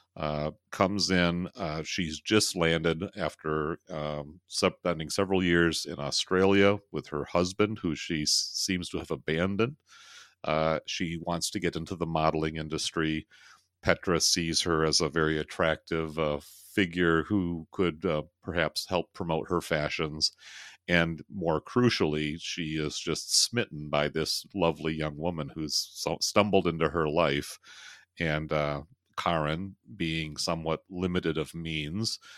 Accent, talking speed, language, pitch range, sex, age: American, 140 wpm, English, 75-90 Hz, male, 40-59